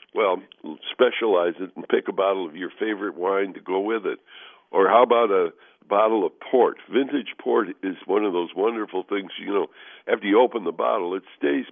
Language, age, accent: English, 60-79, American